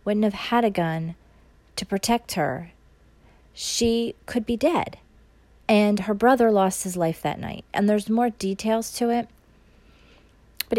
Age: 30-49